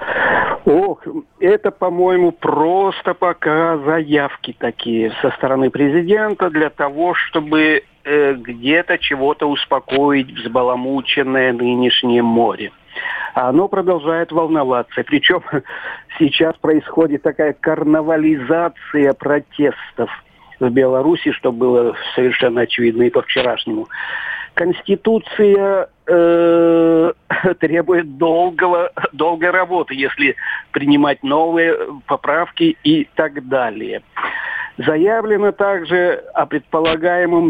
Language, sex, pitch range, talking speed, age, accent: Russian, male, 140-185 Hz, 85 wpm, 50-69, native